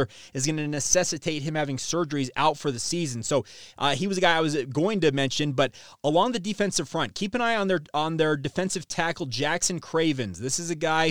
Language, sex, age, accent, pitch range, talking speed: English, male, 30-49, American, 135-165 Hz, 225 wpm